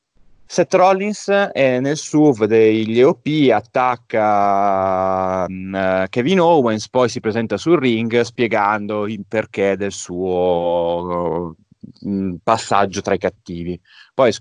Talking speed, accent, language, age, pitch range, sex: 105 wpm, native, Italian, 30-49, 105-140 Hz, male